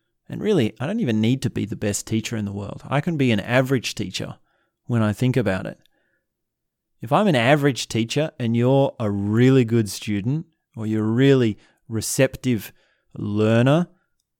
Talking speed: 175 wpm